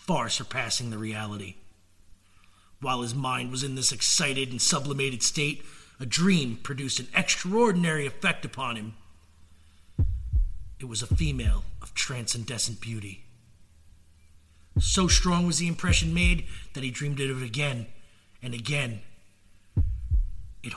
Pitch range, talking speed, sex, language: 95-145 Hz, 125 wpm, male, English